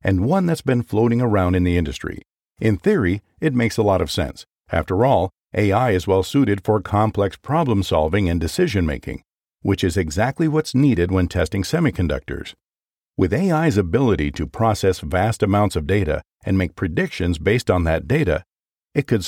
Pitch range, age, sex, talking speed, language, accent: 90-120 Hz, 50-69, male, 165 wpm, English, American